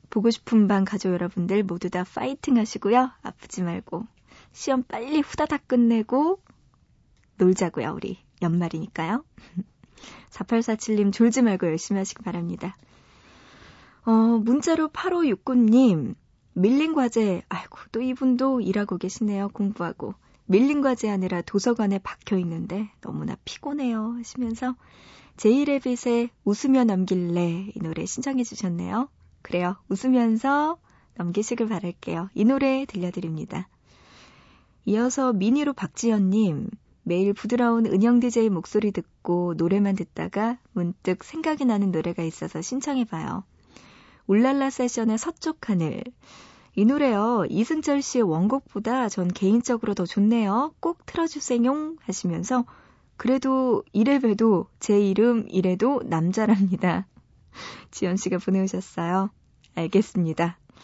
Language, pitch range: Korean, 190-255 Hz